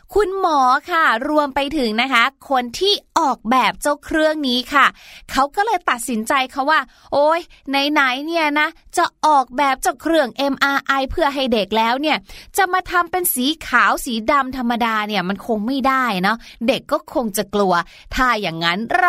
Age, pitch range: 20-39, 230-310 Hz